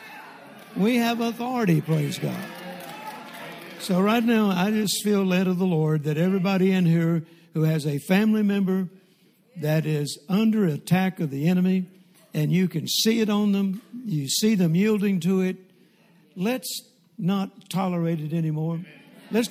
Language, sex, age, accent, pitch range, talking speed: English, male, 60-79, American, 175-215 Hz, 155 wpm